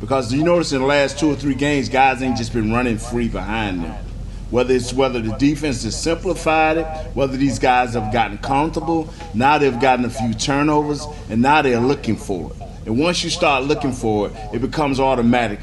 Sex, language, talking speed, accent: male, English, 205 wpm, American